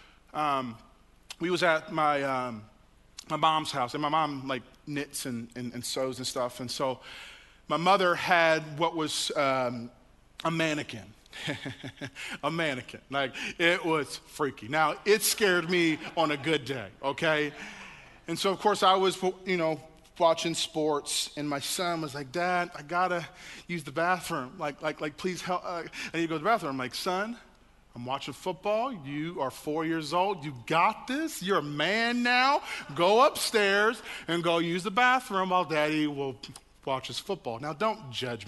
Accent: American